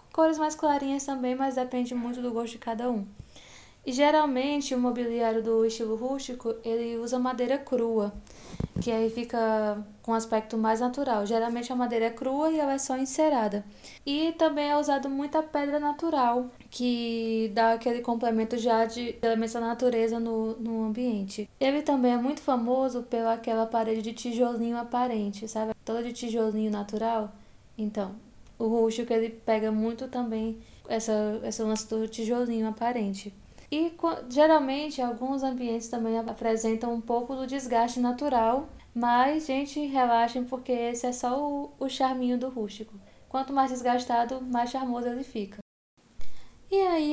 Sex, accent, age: female, Brazilian, 10-29